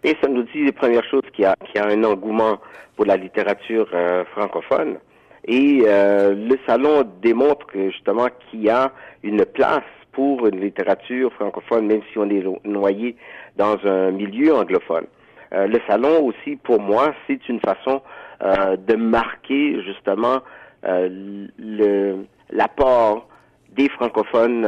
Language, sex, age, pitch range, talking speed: French, male, 50-69, 100-125 Hz, 150 wpm